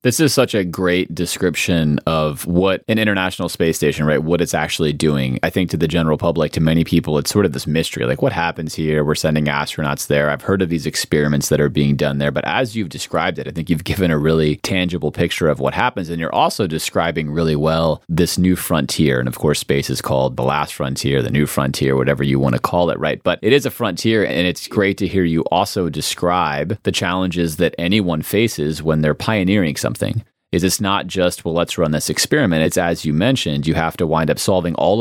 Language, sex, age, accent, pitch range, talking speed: English, male, 30-49, American, 75-95 Hz, 235 wpm